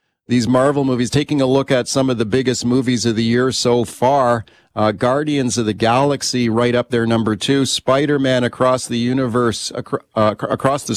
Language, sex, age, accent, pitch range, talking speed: English, male, 40-59, American, 115-150 Hz, 195 wpm